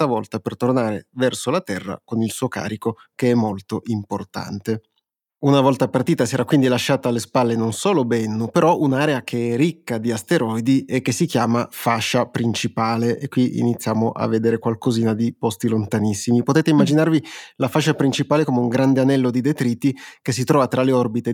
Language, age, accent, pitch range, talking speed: Italian, 30-49, native, 115-135 Hz, 185 wpm